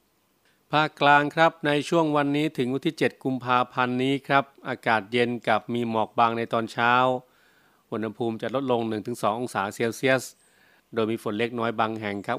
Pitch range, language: 110-130 Hz, Thai